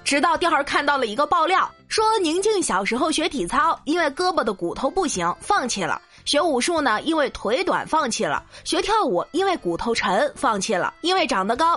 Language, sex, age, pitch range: Chinese, female, 20-39, 250-370 Hz